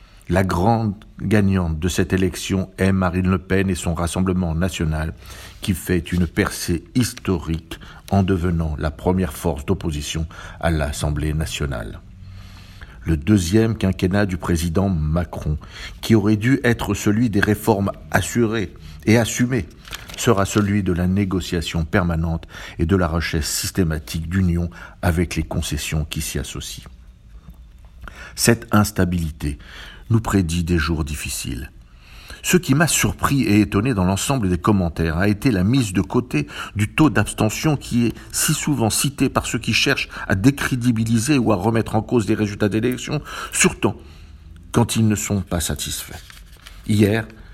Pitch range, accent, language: 85-110 Hz, French, French